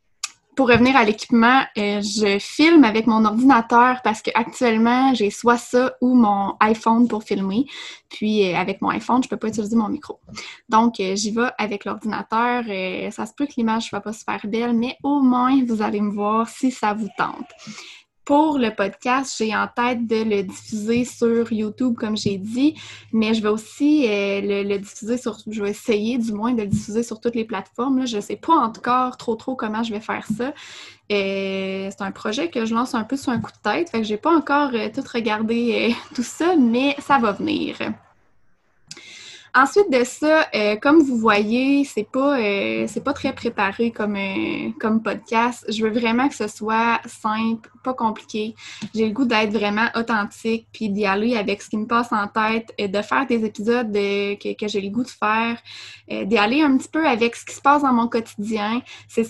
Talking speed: 205 wpm